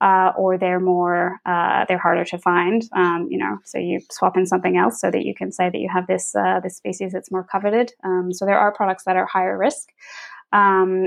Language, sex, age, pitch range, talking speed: English, female, 20-39, 180-195 Hz, 235 wpm